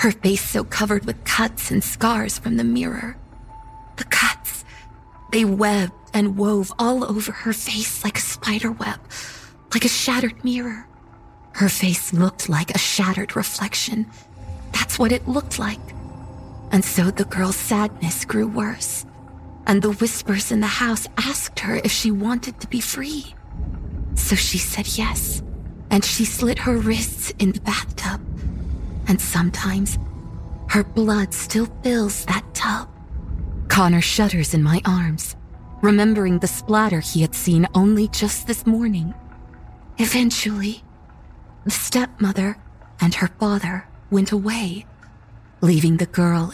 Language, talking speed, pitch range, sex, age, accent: English, 140 wpm, 150-220 Hz, female, 20-39, American